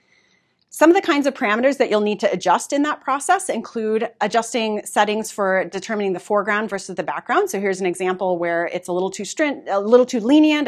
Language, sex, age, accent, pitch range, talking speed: English, female, 30-49, American, 185-250 Hz, 215 wpm